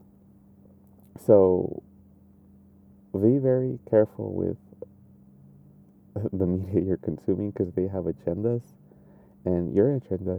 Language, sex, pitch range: English, male, 90-110 Hz